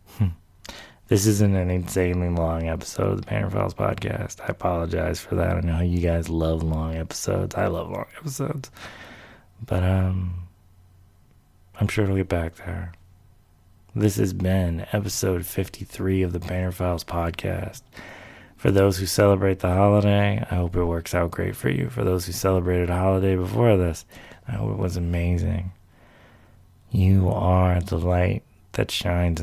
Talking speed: 155 wpm